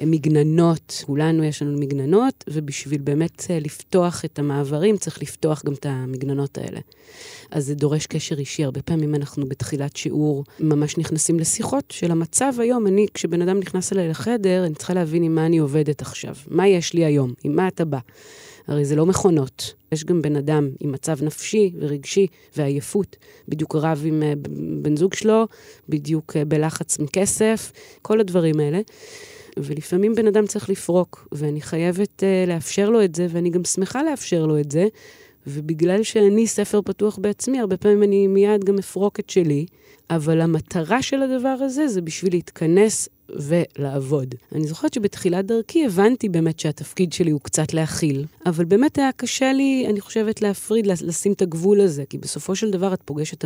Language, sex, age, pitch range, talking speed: Hebrew, female, 30-49, 150-200 Hz, 165 wpm